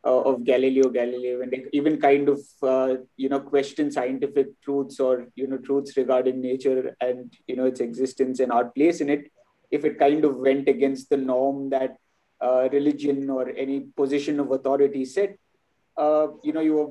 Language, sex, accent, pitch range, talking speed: English, male, Indian, 135-155 Hz, 185 wpm